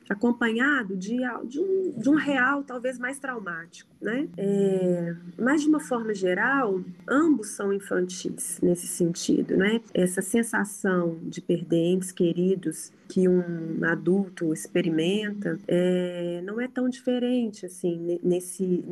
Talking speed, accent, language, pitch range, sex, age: 115 wpm, Brazilian, Portuguese, 175-210 Hz, female, 30-49